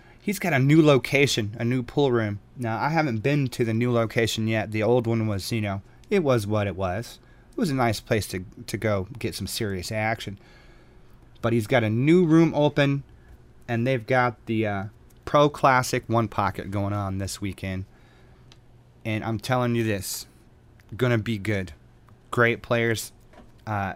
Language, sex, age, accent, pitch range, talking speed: English, male, 30-49, American, 110-125 Hz, 185 wpm